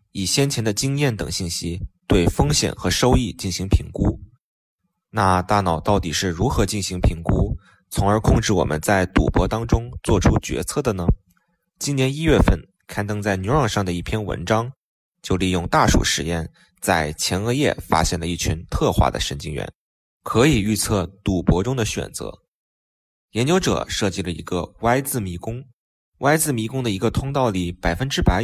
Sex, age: male, 20-39